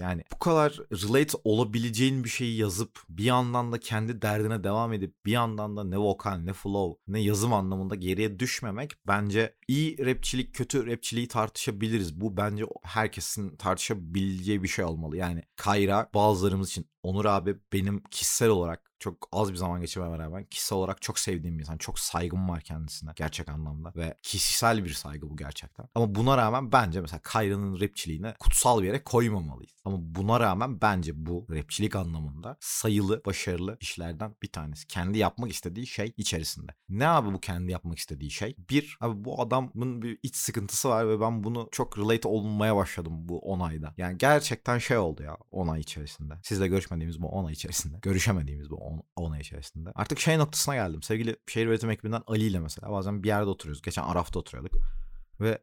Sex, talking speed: male, 180 wpm